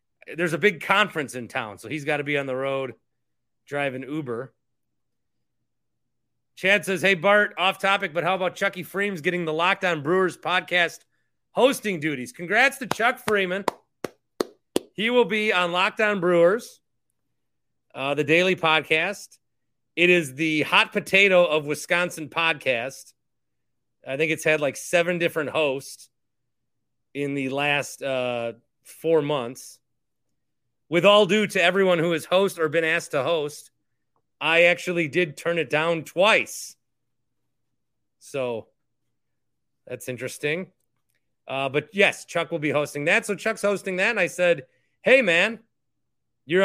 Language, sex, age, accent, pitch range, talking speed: English, male, 30-49, American, 145-190 Hz, 145 wpm